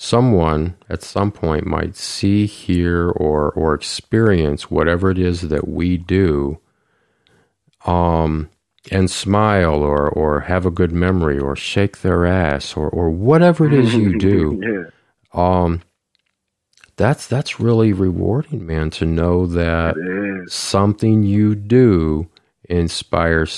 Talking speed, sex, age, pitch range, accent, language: 125 wpm, male, 40-59, 80-105 Hz, American, English